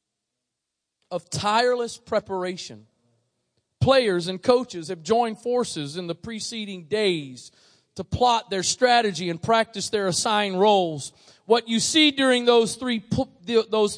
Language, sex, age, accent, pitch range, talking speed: English, male, 40-59, American, 195-260 Hz, 120 wpm